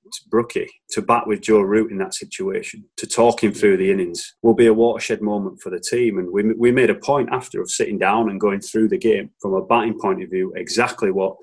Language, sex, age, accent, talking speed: English, male, 30-49, British, 245 wpm